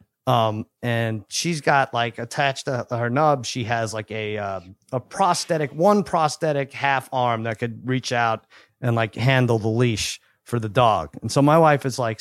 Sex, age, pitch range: male, 30-49, 115-155 Hz